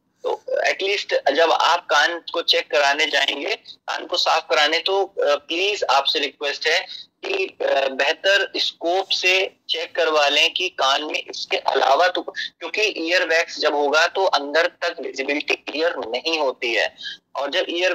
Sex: male